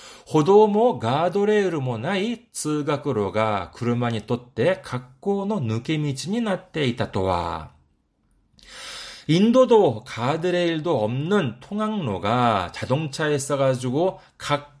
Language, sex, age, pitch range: Korean, male, 40-59, 125-185 Hz